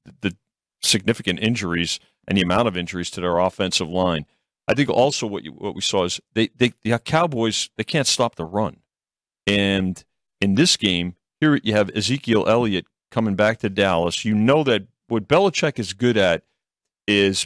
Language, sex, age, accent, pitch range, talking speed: English, male, 40-59, American, 105-145 Hz, 180 wpm